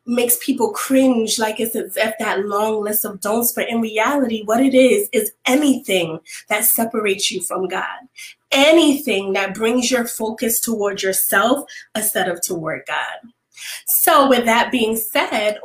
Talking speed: 155 wpm